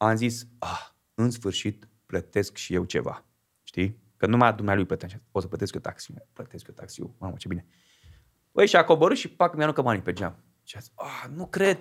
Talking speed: 200 wpm